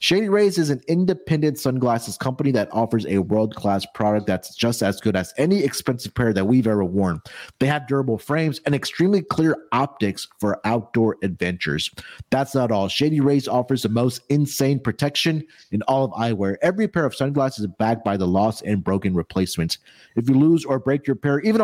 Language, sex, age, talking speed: English, male, 30-49, 195 wpm